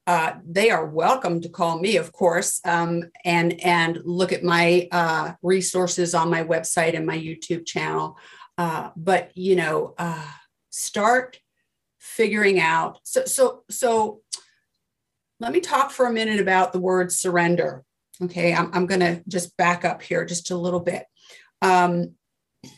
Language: English